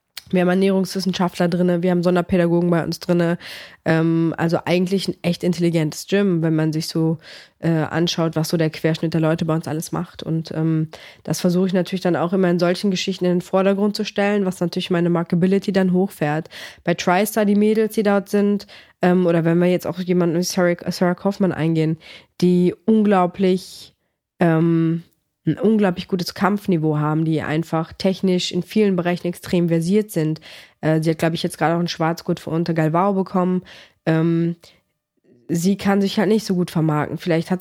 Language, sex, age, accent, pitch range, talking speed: German, female, 20-39, German, 165-190 Hz, 180 wpm